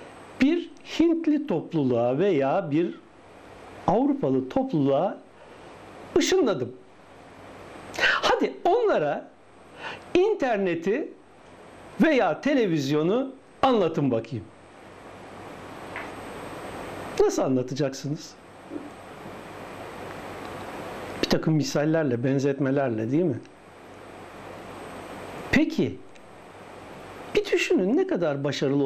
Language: Turkish